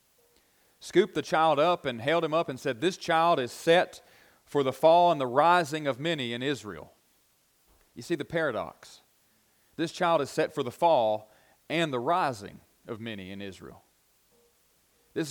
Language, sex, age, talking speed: English, male, 40-59, 170 wpm